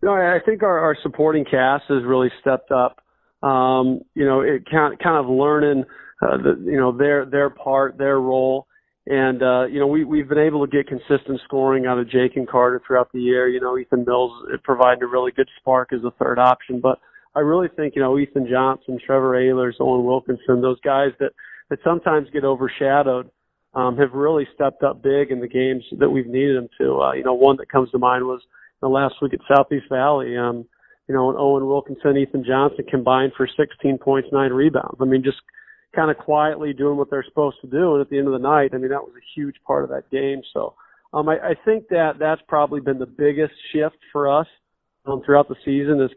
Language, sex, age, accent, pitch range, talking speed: English, male, 40-59, American, 130-145 Hz, 225 wpm